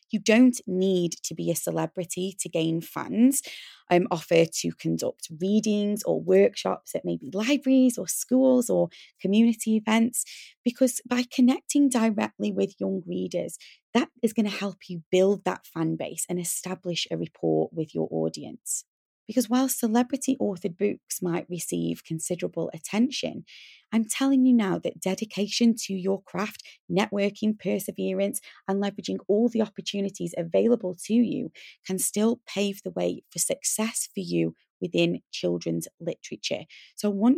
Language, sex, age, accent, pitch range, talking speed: English, female, 20-39, British, 165-225 Hz, 150 wpm